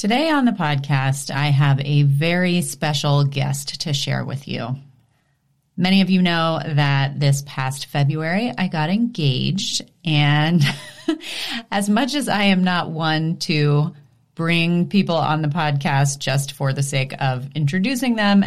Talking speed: 150 wpm